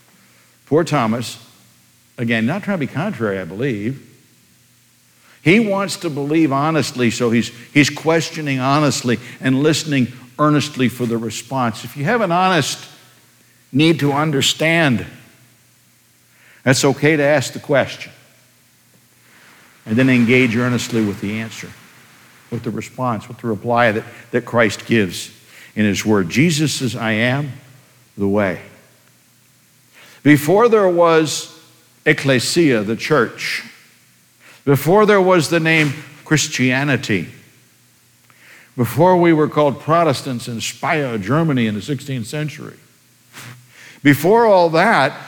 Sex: male